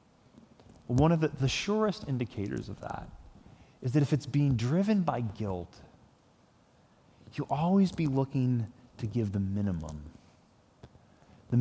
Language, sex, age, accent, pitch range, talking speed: English, male, 30-49, American, 115-160 Hz, 130 wpm